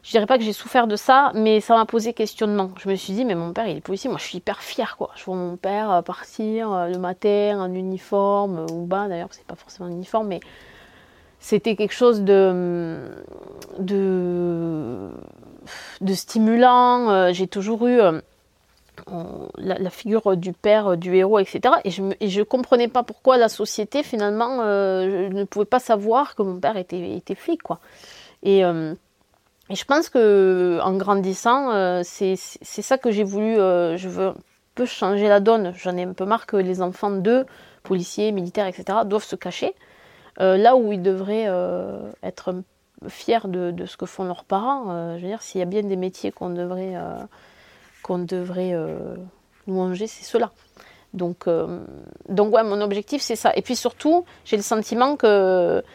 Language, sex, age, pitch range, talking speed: French, female, 30-49, 180-225 Hz, 190 wpm